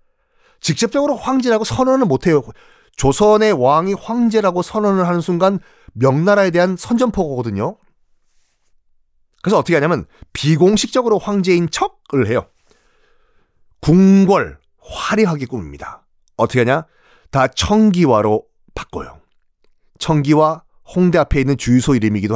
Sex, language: male, Korean